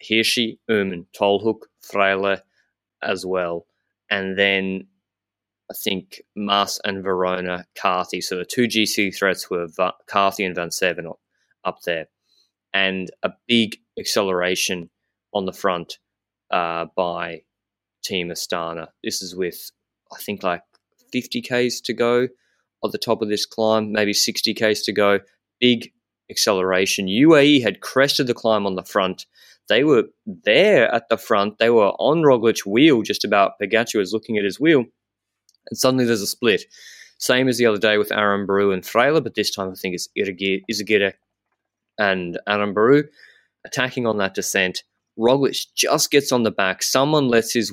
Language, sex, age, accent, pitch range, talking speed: English, male, 20-39, Australian, 95-120 Hz, 155 wpm